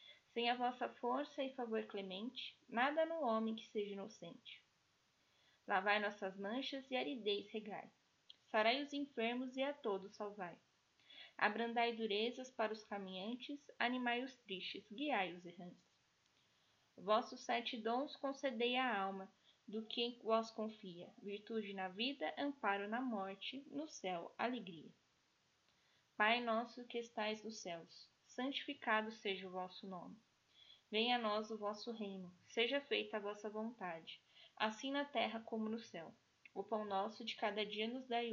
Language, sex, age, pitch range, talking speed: Portuguese, female, 10-29, 205-245 Hz, 145 wpm